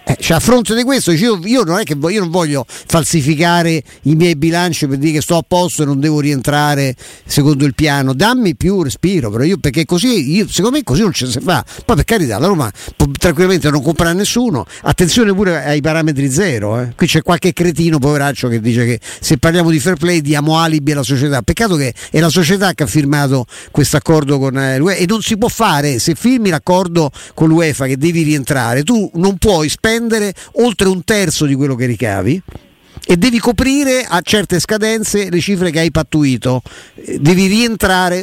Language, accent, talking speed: Italian, native, 200 wpm